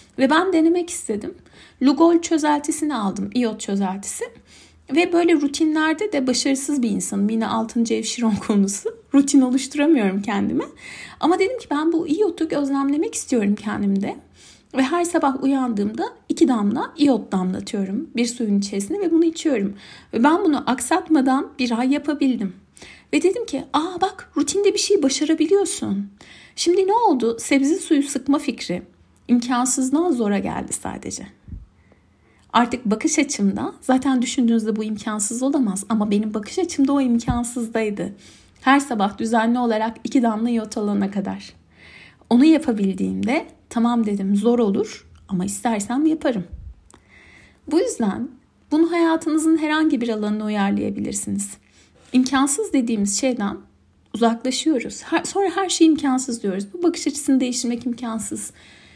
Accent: native